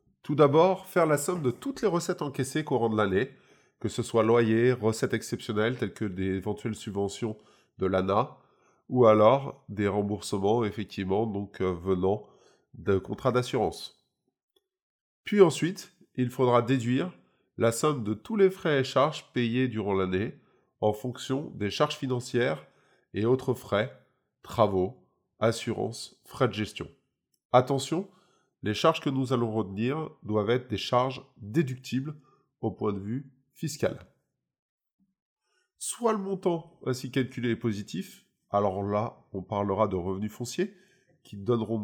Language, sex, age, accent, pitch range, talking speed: French, male, 20-39, French, 105-145 Hz, 140 wpm